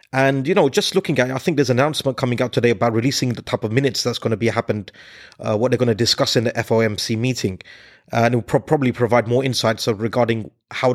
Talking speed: 250 wpm